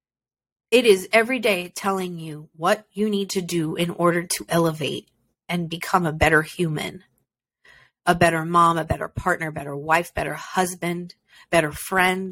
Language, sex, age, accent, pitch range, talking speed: English, female, 30-49, American, 160-195 Hz, 155 wpm